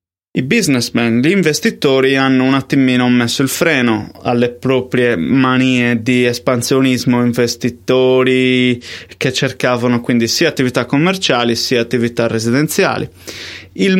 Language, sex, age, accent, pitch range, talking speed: Italian, male, 20-39, native, 120-150 Hz, 110 wpm